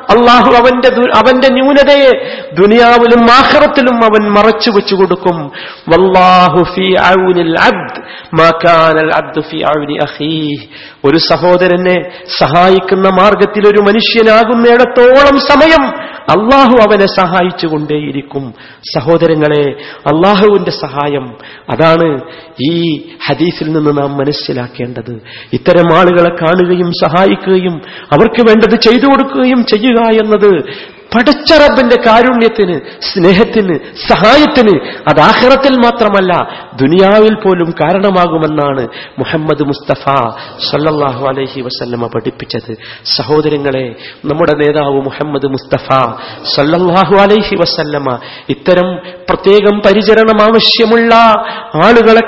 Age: 50-69